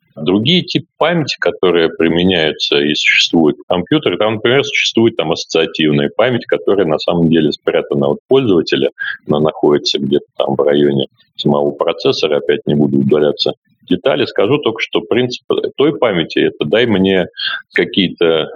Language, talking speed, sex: Russian, 145 wpm, male